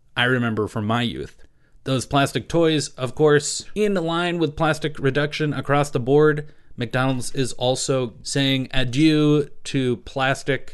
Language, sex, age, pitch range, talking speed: English, male, 30-49, 120-145 Hz, 140 wpm